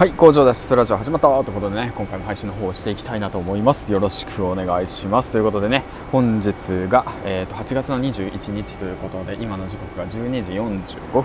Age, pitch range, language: 20-39, 95-115 Hz, Japanese